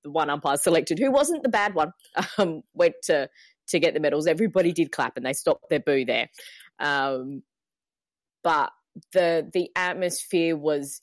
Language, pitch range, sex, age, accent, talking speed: English, 140-180 Hz, female, 20-39, Australian, 165 wpm